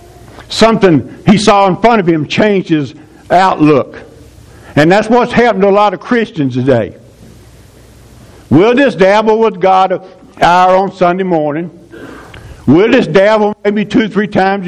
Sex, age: male, 60-79